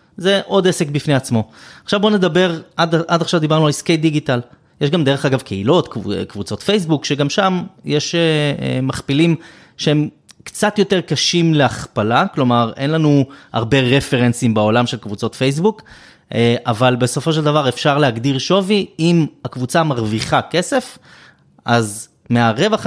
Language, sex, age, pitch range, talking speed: Hebrew, male, 20-39, 120-170 Hz, 140 wpm